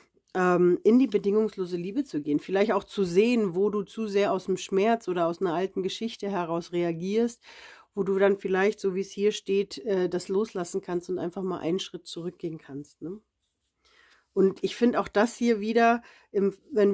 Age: 40-59